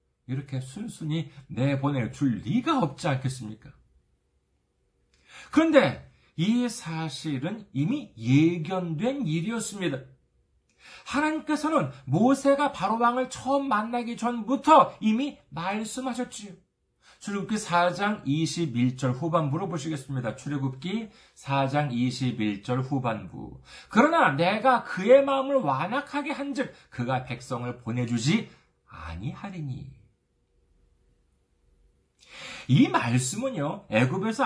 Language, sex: Korean, male